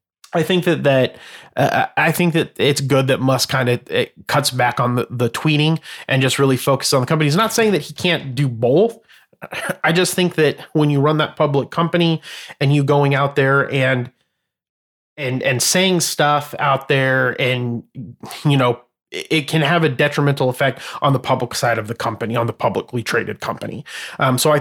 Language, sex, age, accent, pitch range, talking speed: English, male, 30-49, American, 125-150 Hz, 200 wpm